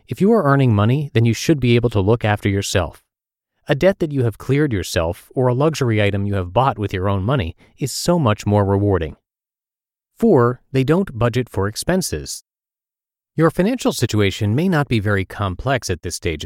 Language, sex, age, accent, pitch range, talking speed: English, male, 30-49, American, 100-140 Hz, 195 wpm